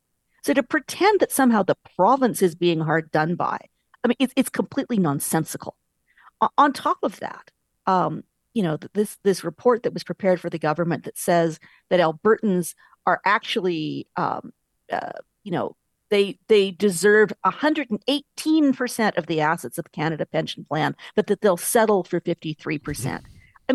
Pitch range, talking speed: 175-245 Hz, 165 wpm